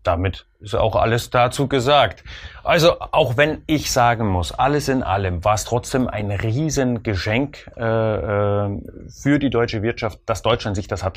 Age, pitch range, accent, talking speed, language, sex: 30-49, 95-120 Hz, German, 165 wpm, German, male